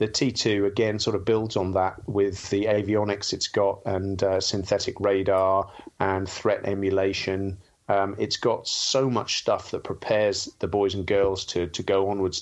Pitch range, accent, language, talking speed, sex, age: 95-110 Hz, British, English, 175 wpm, male, 40-59